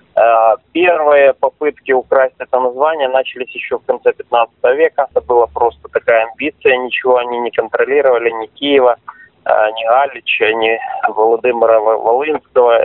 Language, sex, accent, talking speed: Russian, male, native, 125 wpm